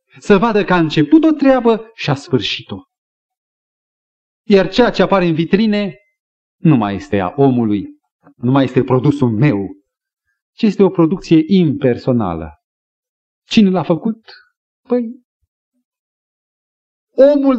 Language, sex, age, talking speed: Romanian, male, 40-59, 120 wpm